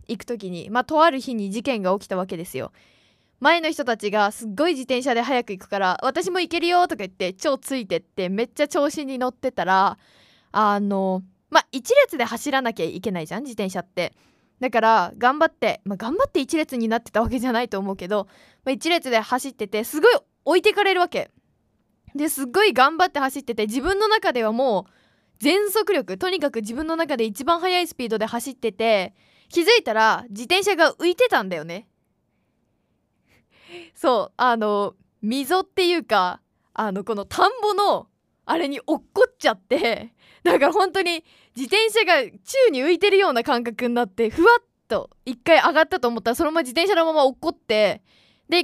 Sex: female